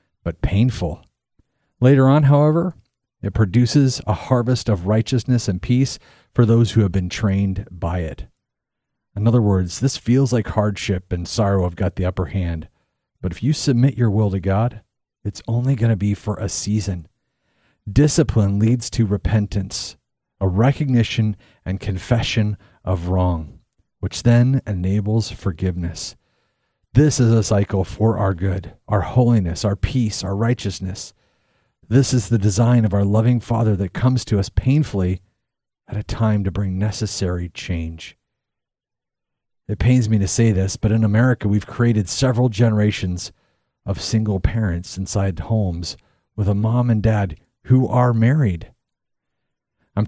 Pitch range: 95-120 Hz